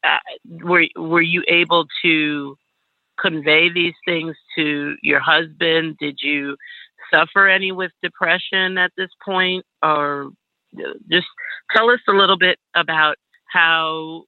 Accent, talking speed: American, 125 wpm